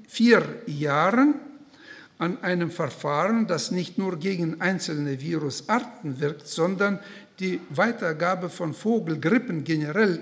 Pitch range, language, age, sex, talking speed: 160-230 Hz, German, 60-79, male, 105 wpm